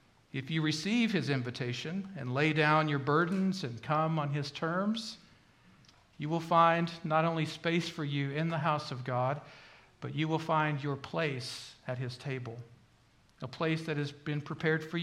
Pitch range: 120-155 Hz